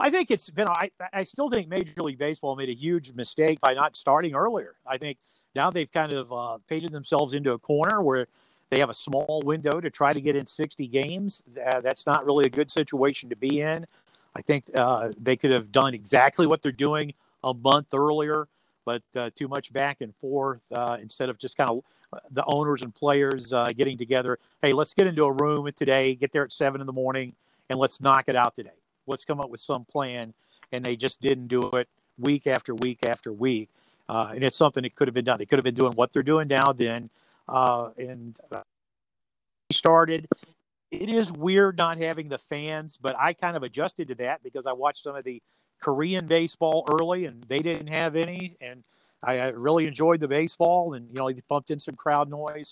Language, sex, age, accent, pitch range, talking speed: English, male, 50-69, American, 130-160 Hz, 215 wpm